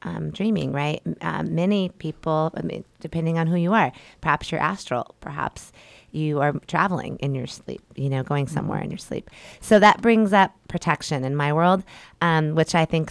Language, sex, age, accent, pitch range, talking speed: English, female, 30-49, American, 145-165 Hz, 190 wpm